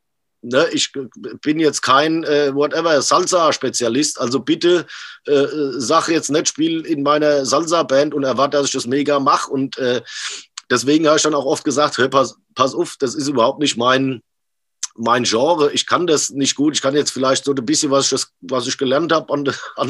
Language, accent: German, German